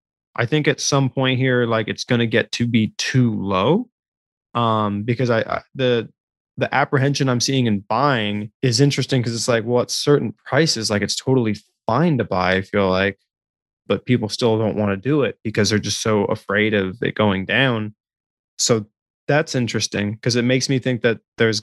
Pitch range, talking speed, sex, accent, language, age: 105-130 Hz, 195 wpm, male, American, English, 20-39